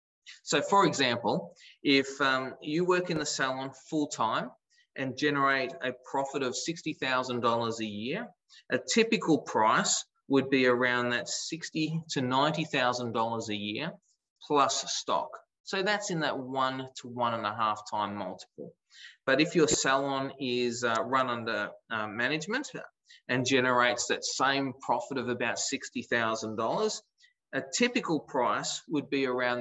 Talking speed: 145 wpm